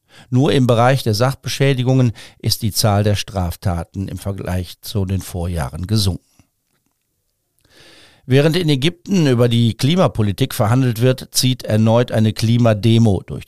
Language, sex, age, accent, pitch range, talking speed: German, male, 50-69, German, 100-125 Hz, 130 wpm